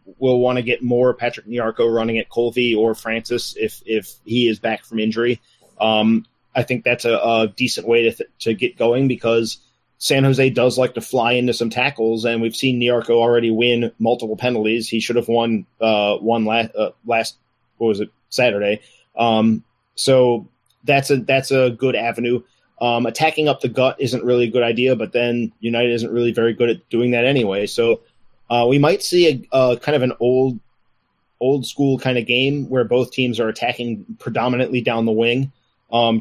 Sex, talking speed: male, 195 wpm